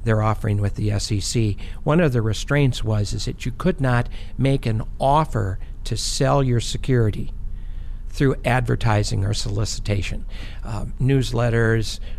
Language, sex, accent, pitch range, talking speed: English, male, American, 105-130 Hz, 140 wpm